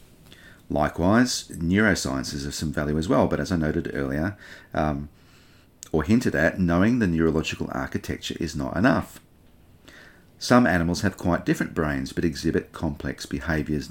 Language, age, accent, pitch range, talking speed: English, 40-59, Australian, 80-95 Hz, 145 wpm